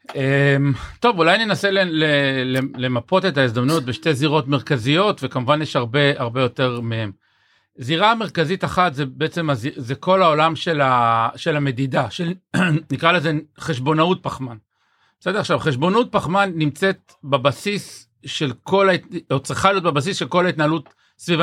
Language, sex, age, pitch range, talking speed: Hebrew, male, 50-69, 140-185 Hz, 125 wpm